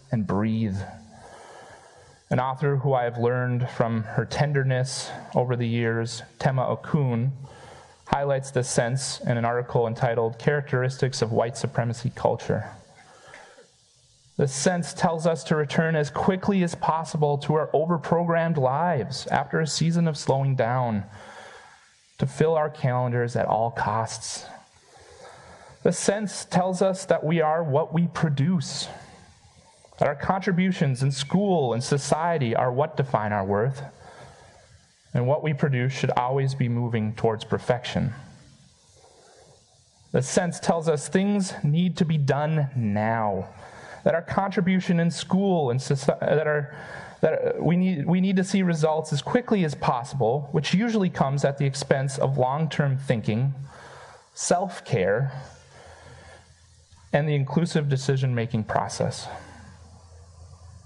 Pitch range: 120-160 Hz